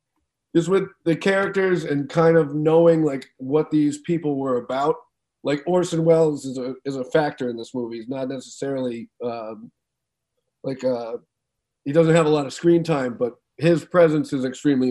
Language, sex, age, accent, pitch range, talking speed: English, male, 30-49, American, 130-160 Hz, 175 wpm